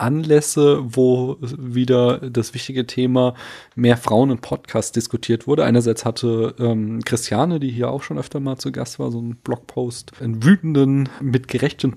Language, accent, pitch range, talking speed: German, German, 110-130 Hz, 160 wpm